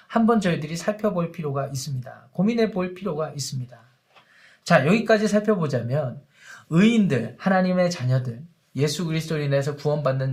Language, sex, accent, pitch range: Korean, male, native, 140-195 Hz